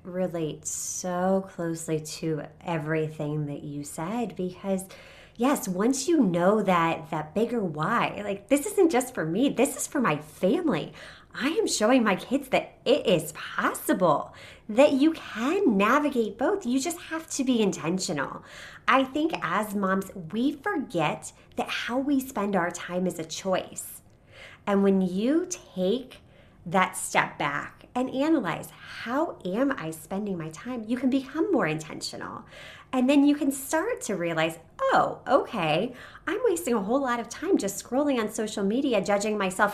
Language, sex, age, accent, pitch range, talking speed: English, female, 30-49, American, 185-280 Hz, 160 wpm